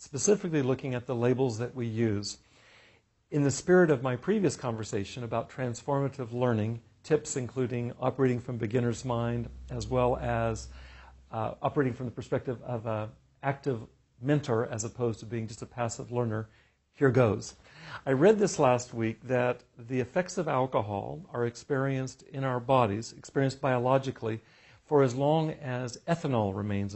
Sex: male